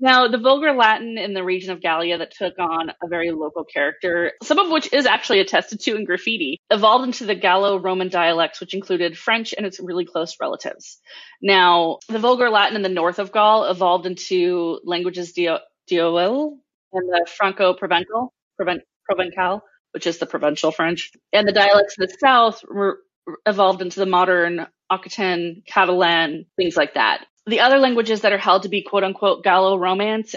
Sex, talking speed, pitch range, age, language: female, 175 wpm, 175-205 Hz, 20-39, English